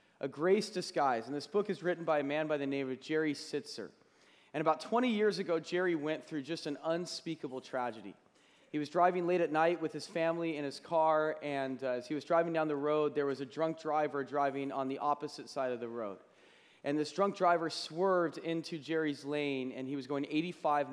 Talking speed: 220 wpm